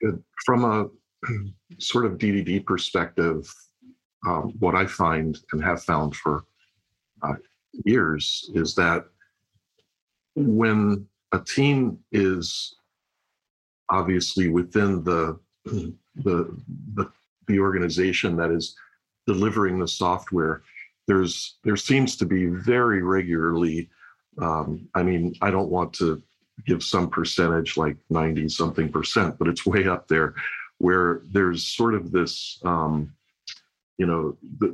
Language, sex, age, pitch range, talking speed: English, male, 50-69, 85-100 Hz, 120 wpm